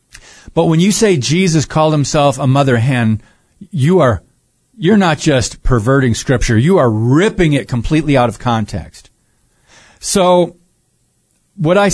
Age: 40-59